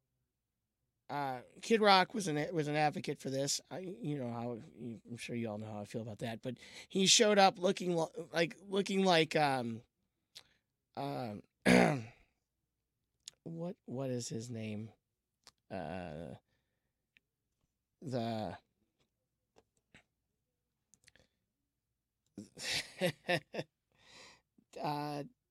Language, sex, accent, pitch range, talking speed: English, male, American, 115-155 Hz, 95 wpm